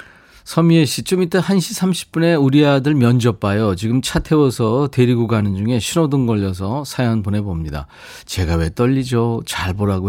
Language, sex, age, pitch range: Korean, male, 40-59, 95-135 Hz